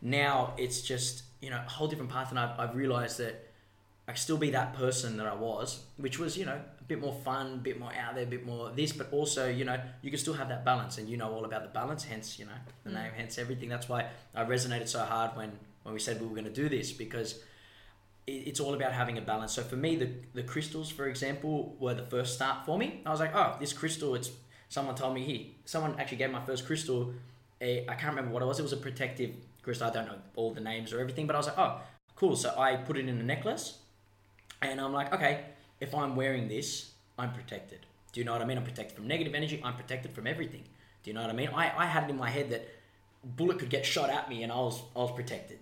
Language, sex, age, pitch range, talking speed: English, male, 10-29, 115-140 Hz, 265 wpm